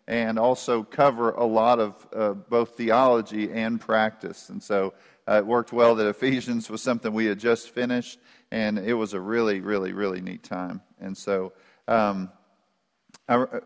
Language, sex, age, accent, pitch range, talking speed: English, male, 40-59, American, 100-120 Hz, 165 wpm